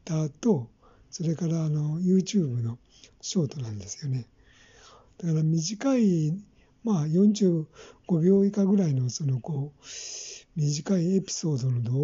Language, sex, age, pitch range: Japanese, male, 60-79, 130-175 Hz